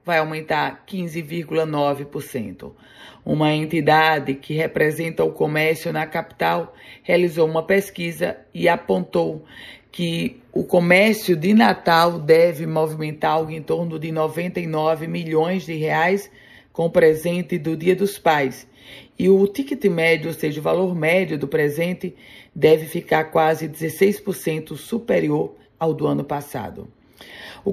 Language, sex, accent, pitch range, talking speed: Portuguese, female, Brazilian, 155-180 Hz, 130 wpm